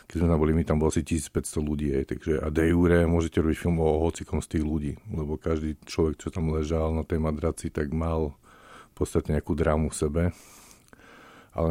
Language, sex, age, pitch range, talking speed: Czech, male, 50-69, 75-85 Hz, 185 wpm